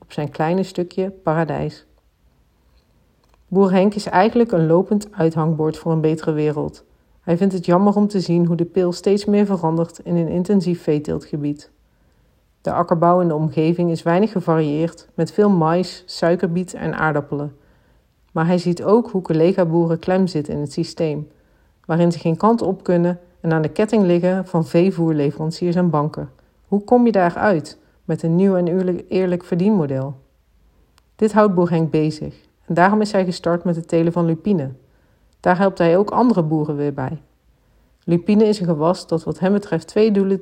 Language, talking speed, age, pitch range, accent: Dutch, 170 wpm, 50-69, 155-190 Hz, Dutch